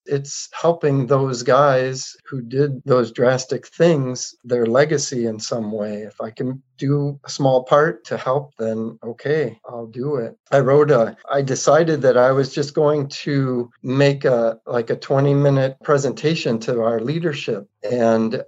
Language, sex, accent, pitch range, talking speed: English, male, American, 115-140 Hz, 160 wpm